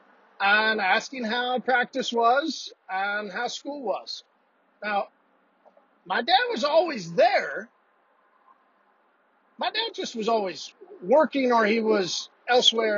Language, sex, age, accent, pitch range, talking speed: English, male, 40-59, American, 200-260 Hz, 115 wpm